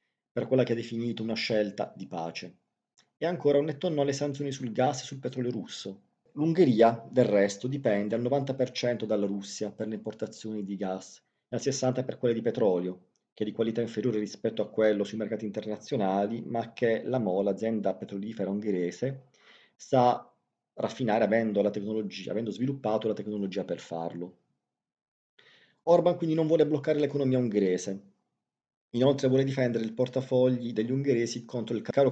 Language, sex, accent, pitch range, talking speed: Italian, male, native, 105-130 Hz, 165 wpm